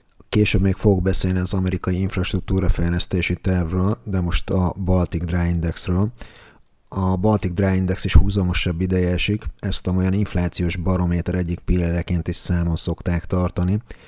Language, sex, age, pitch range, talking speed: Hungarian, male, 30-49, 85-95 Hz, 135 wpm